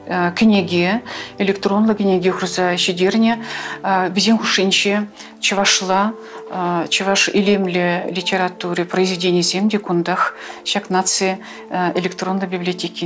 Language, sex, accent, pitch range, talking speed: Russian, female, native, 180-205 Hz, 100 wpm